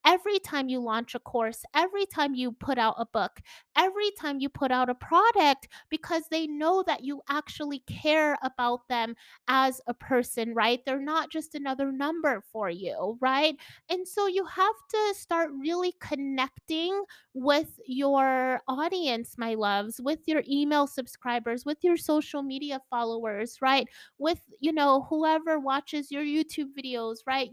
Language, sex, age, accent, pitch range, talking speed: English, female, 30-49, American, 255-315 Hz, 160 wpm